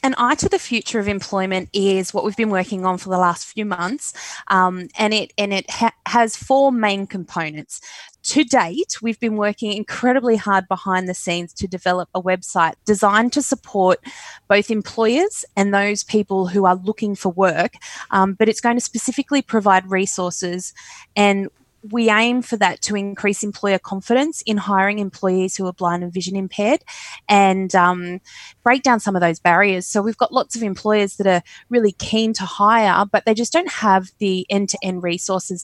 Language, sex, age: English, female, 20-39